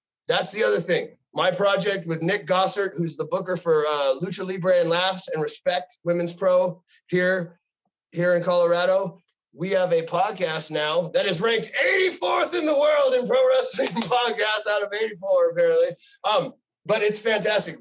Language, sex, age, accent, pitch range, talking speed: English, male, 30-49, American, 175-215 Hz, 170 wpm